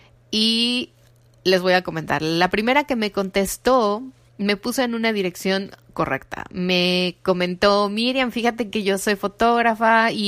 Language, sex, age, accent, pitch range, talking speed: Spanish, female, 30-49, Mexican, 180-220 Hz, 145 wpm